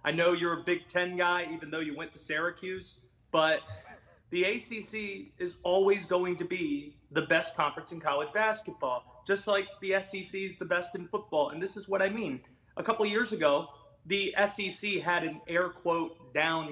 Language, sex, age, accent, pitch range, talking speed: English, male, 30-49, American, 160-200 Hz, 190 wpm